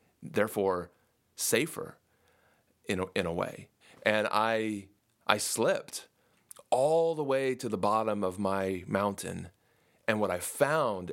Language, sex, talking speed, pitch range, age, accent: English, male, 130 wpm, 95-115 Hz, 30-49, American